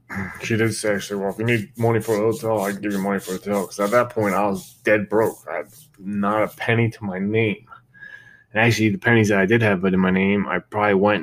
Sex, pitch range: male, 100-120 Hz